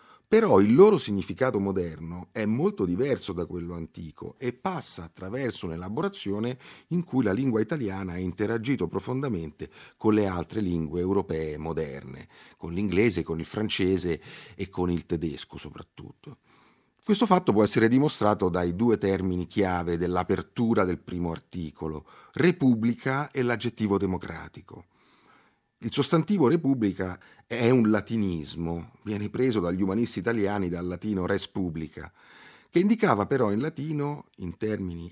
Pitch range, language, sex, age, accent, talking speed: 90-135 Hz, Italian, male, 40-59, native, 135 wpm